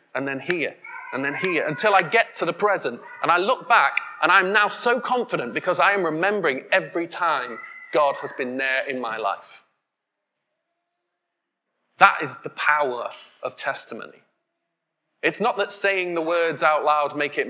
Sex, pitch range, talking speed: male, 150-245 Hz, 170 wpm